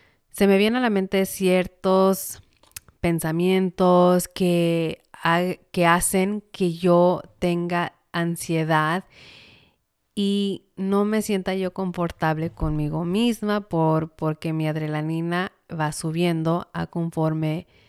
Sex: female